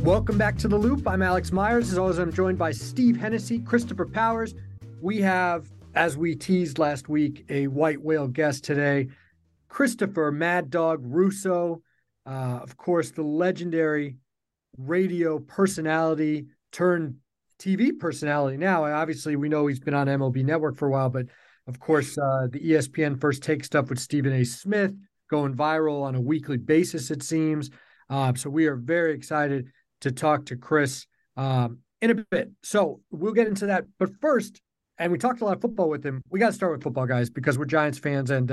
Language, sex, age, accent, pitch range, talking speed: English, male, 40-59, American, 135-180 Hz, 185 wpm